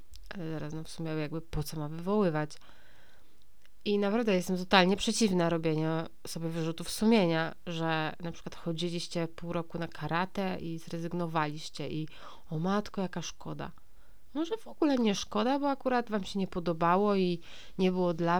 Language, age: Polish, 30-49